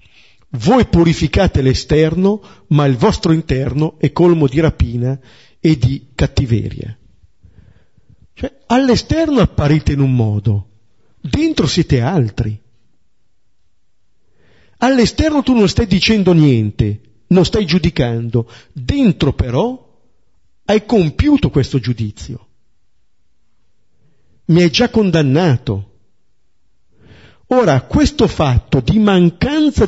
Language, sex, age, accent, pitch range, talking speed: Italian, male, 50-69, native, 110-175 Hz, 90 wpm